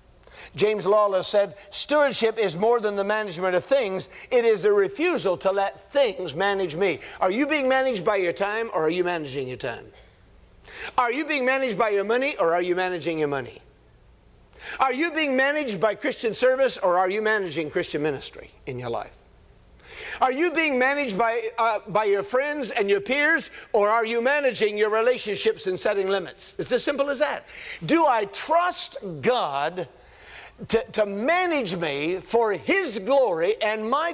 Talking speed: 175 wpm